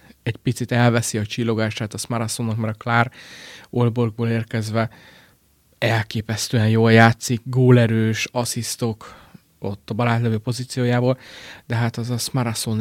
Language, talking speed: Hungarian, 120 wpm